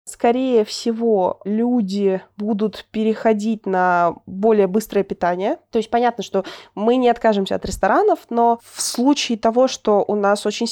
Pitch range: 200-245 Hz